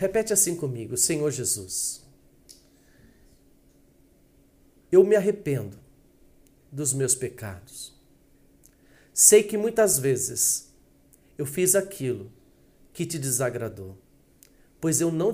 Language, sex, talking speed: Portuguese, male, 95 wpm